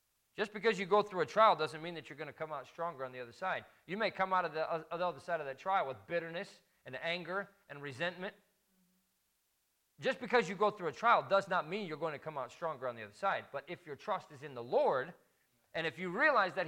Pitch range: 115-170 Hz